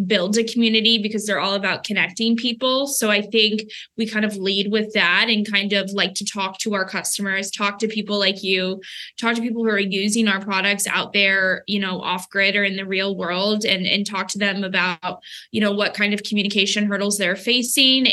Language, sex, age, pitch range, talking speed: English, female, 10-29, 195-225 Hz, 220 wpm